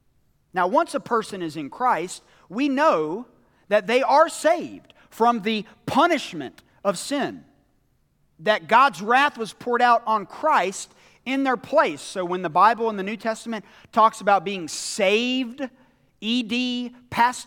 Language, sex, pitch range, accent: English, male, 200-255 Hz, American